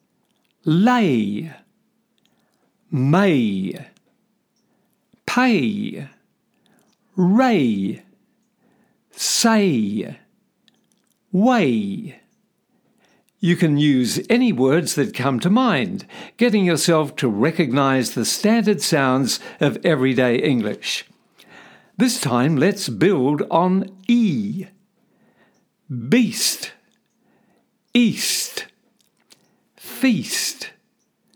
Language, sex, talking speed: English, male, 65 wpm